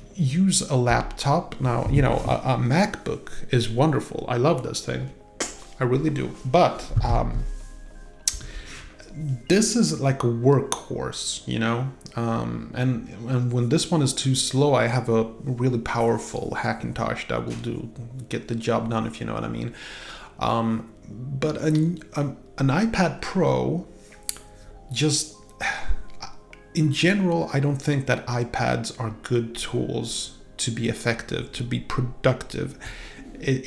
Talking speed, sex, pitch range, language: 140 wpm, male, 115-150 Hz, English